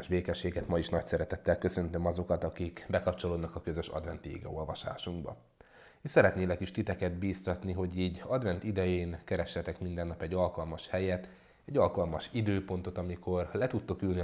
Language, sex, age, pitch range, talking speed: Hungarian, male, 30-49, 85-100 Hz, 155 wpm